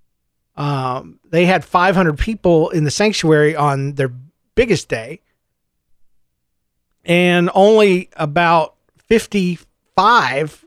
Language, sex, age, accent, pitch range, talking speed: English, male, 40-59, American, 125-190 Hz, 90 wpm